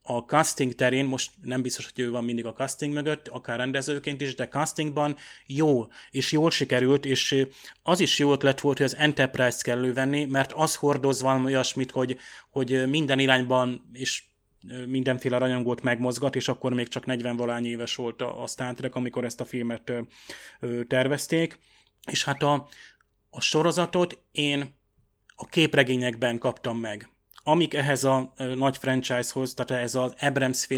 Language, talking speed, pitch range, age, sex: Hungarian, 155 wpm, 125-140 Hz, 30-49, male